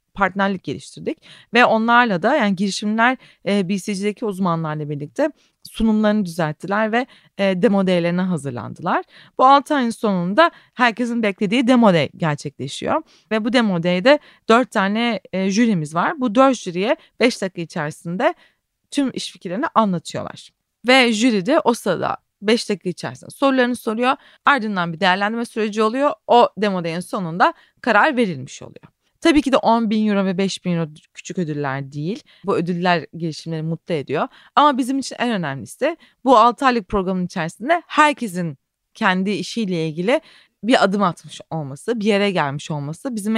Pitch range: 180-240 Hz